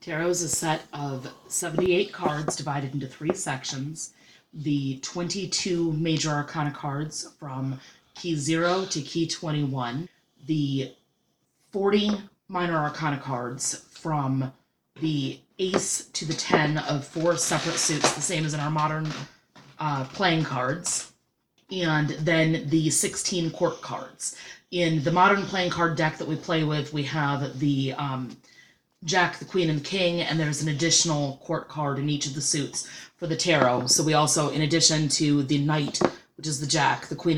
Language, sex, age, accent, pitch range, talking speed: English, female, 30-49, American, 140-170 Hz, 160 wpm